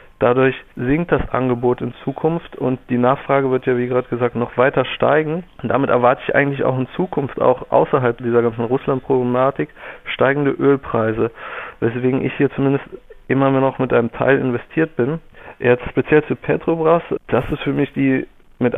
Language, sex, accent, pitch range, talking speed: German, male, German, 125-145 Hz, 170 wpm